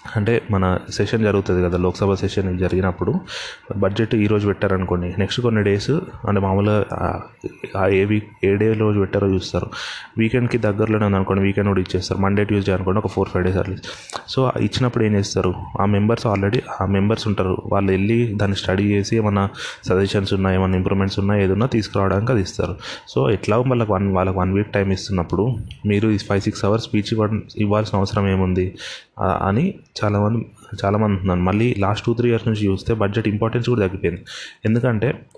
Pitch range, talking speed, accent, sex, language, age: 95-110 Hz, 155 wpm, native, male, Telugu, 20-39